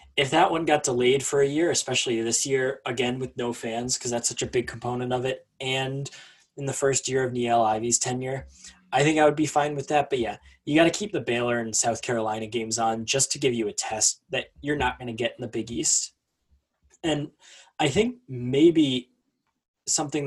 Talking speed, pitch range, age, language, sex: 220 wpm, 115-140 Hz, 10-29, English, male